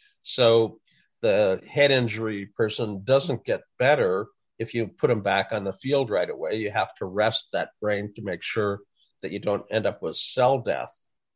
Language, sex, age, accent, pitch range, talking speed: English, male, 50-69, American, 110-135 Hz, 185 wpm